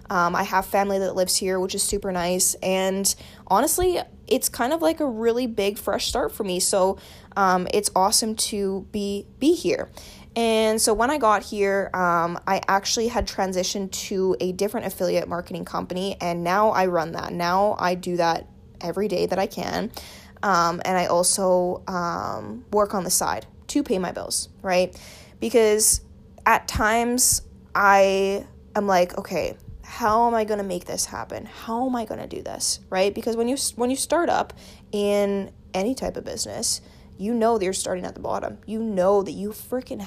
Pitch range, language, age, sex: 185-225 Hz, English, 10-29, female